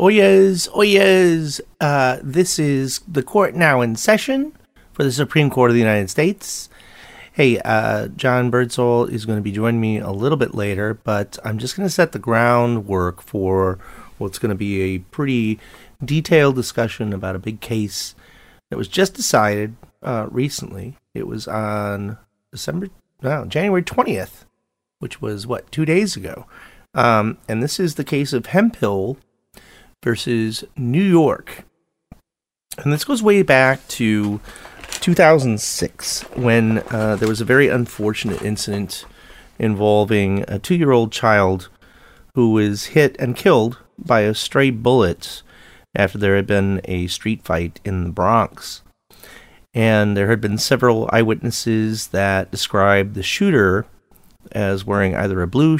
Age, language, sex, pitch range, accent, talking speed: 40-59, English, male, 105-135 Hz, American, 150 wpm